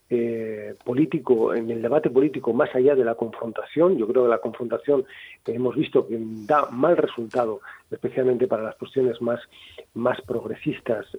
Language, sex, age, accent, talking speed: Spanish, male, 40-59, Spanish, 160 wpm